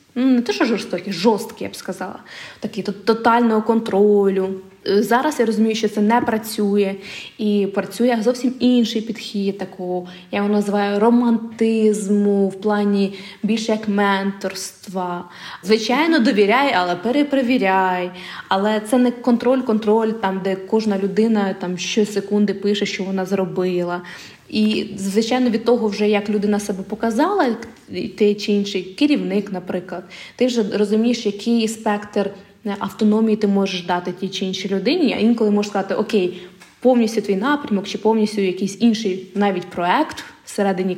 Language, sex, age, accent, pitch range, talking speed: Ukrainian, female, 20-39, native, 195-230 Hz, 140 wpm